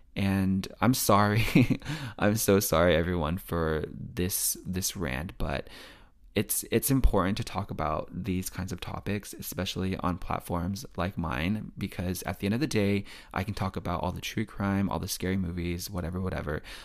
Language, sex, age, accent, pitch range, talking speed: English, male, 20-39, American, 90-110 Hz, 170 wpm